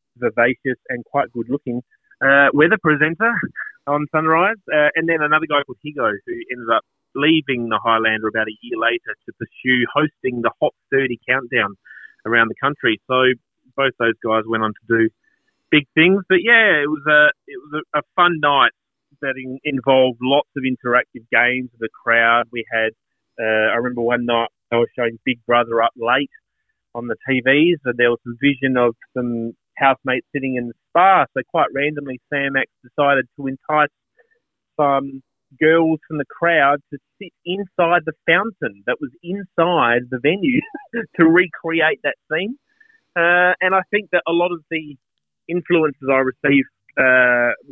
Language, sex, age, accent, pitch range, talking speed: English, male, 30-49, Australian, 120-160 Hz, 170 wpm